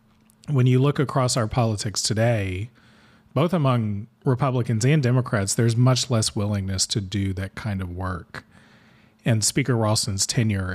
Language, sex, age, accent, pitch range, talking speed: English, male, 40-59, American, 95-125 Hz, 145 wpm